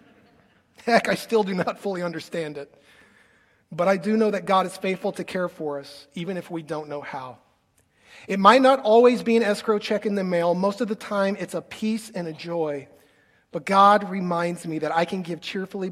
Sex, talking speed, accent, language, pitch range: male, 210 wpm, American, English, 160-205 Hz